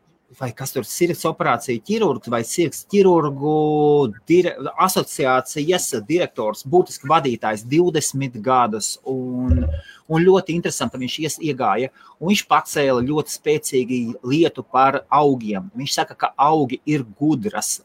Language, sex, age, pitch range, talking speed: English, male, 30-49, 125-175 Hz, 125 wpm